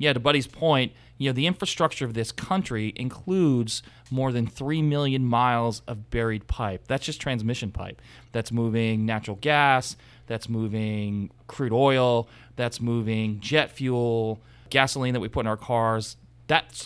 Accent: American